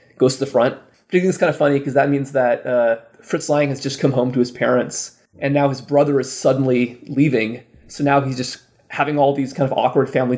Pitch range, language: 125-145 Hz, English